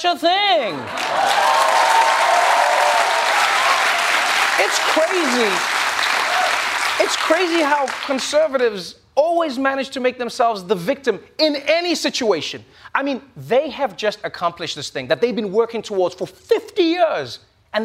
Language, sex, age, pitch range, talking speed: English, male, 30-49, 215-345 Hz, 120 wpm